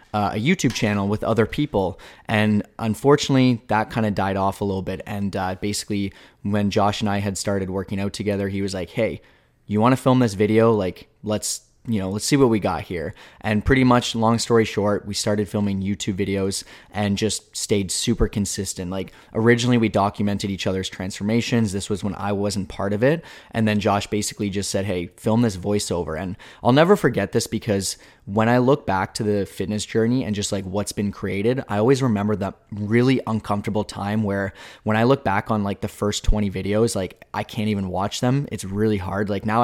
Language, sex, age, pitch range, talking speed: English, male, 20-39, 100-110 Hz, 210 wpm